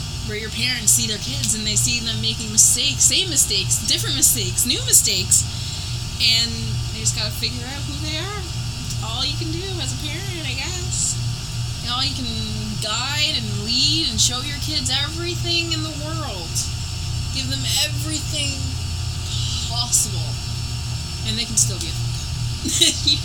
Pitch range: 115-120 Hz